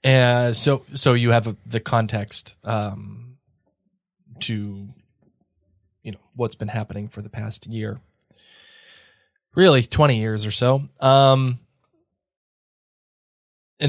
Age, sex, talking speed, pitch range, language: 20-39, male, 110 wpm, 105-130 Hz, English